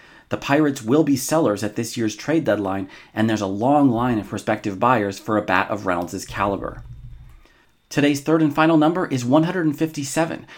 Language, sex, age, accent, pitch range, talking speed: English, male, 30-49, American, 105-140 Hz, 175 wpm